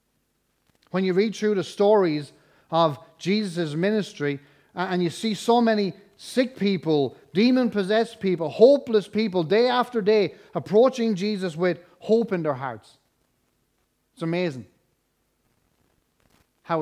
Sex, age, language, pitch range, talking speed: male, 30-49, English, 145-210 Hz, 120 wpm